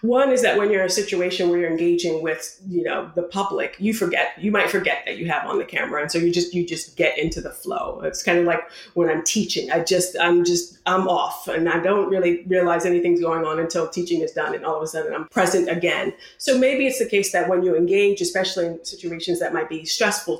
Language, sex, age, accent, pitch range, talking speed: English, female, 30-49, American, 175-235 Hz, 255 wpm